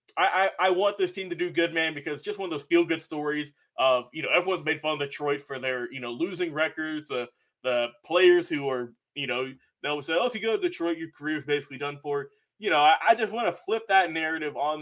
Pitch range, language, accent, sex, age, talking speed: 145-195 Hz, English, American, male, 20-39, 255 wpm